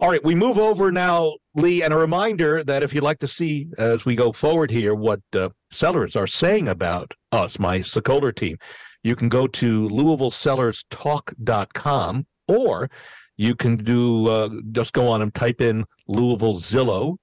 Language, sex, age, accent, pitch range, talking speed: English, male, 60-79, American, 110-150 Hz, 170 wpm